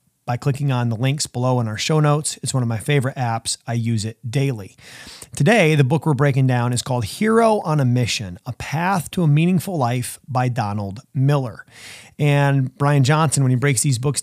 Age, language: 30-49, English